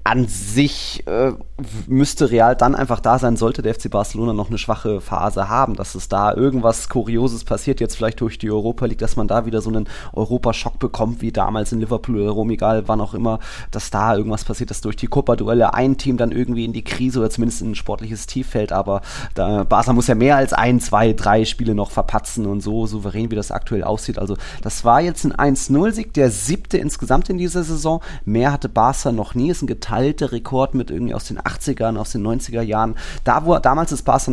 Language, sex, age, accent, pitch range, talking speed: German, male, 30-49, German, 105-135 Hz, 215 wpm